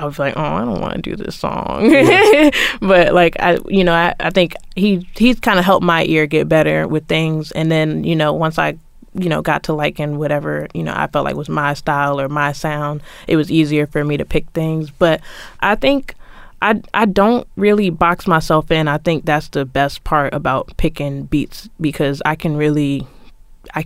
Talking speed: 215 wpm